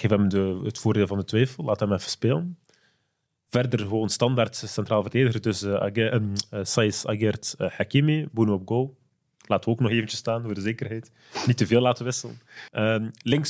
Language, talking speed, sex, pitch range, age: Dutch, 195 wpm, male, 110-135 Hz, 30-49